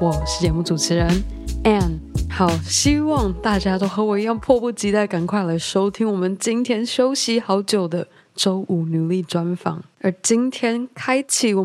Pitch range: 185-230 Hz